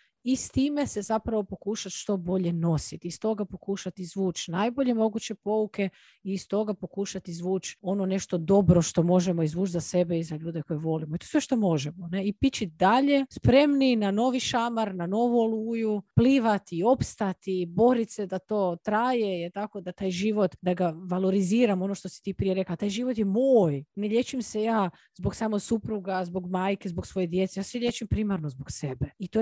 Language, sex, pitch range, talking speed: Croatian, female, 180-230 Hz, 190 wpm